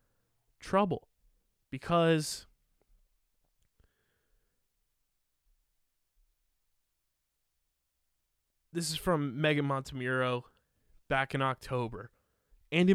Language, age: English, 20-39